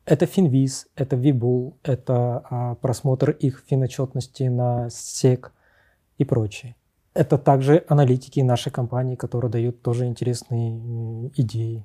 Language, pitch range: Ukrainian, 120-140 Hz